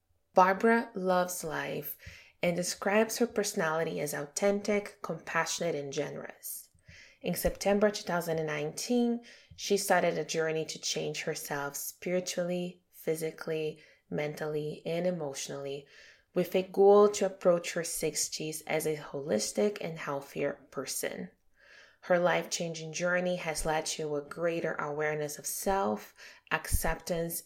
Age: 20-39